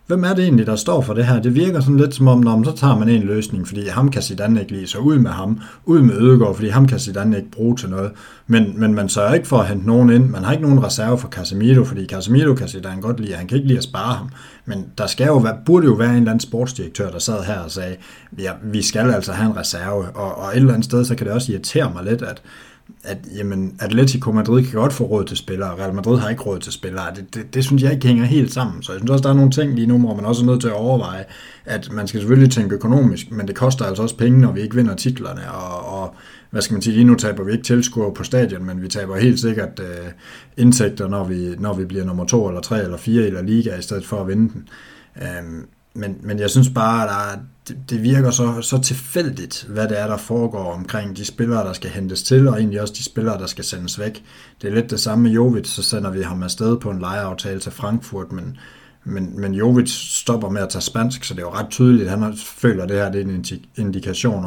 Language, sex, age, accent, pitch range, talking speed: Danish, male, 60-79, native, 100-125 Hz, 260 wpm